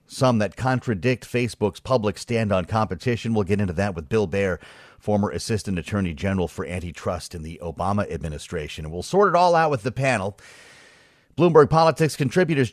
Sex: male